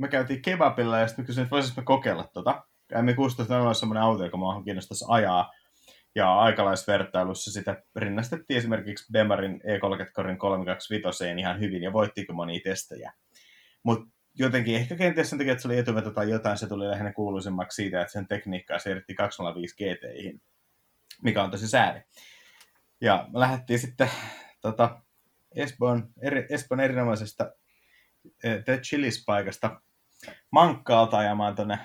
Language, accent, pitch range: Finnish, native, 100-115 Hz